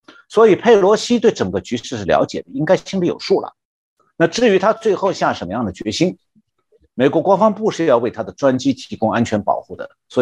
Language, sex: Chinese, male